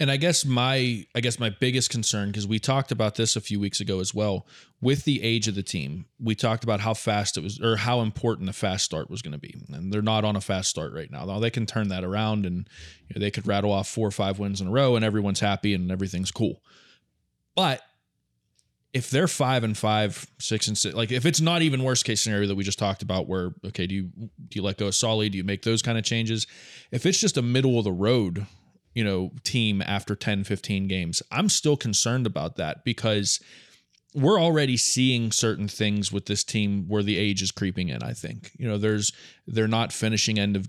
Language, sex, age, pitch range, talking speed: English, male, 20-39, 100-115 Hz, 240 wpm